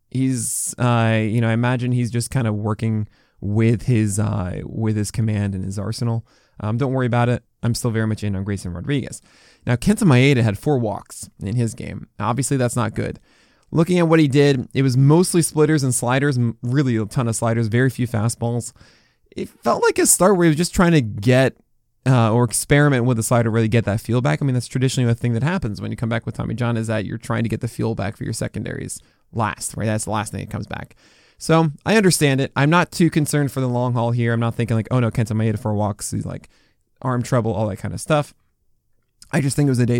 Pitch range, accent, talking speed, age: 115-140 Hz, American, 245 wpm, 20-39